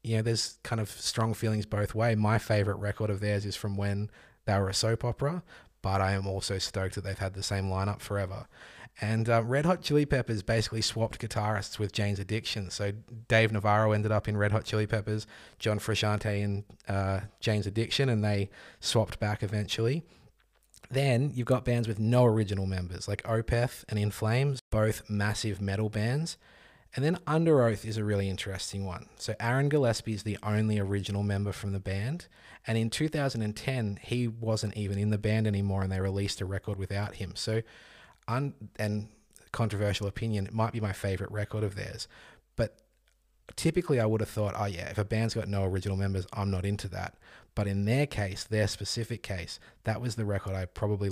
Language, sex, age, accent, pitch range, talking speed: English, male, 20-39, Australian, 100-115 Hz, 195 wpm